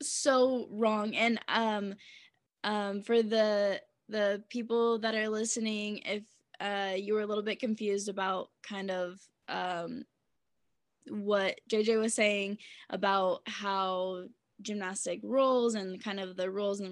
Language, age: English, 10-29